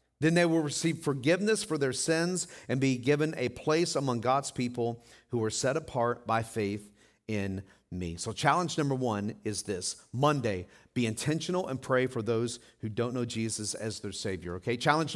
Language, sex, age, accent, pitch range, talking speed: English, male, 50-69, American, 125-175 Hz, 180 wpm